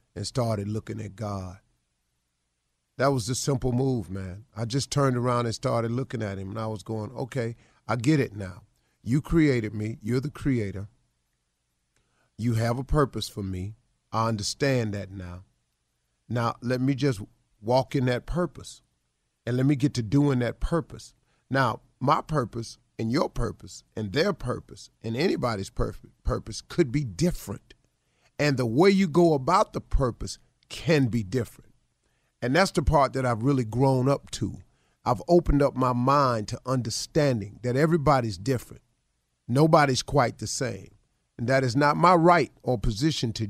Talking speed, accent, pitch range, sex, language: 165 wpm, American, 110-140 Hz, male, English